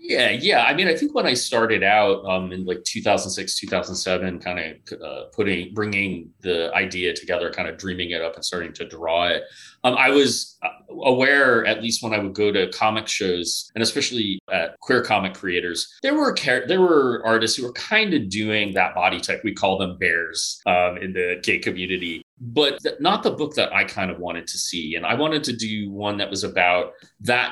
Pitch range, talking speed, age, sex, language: 90-115 Hz, 205 wpm, 30-49, male, English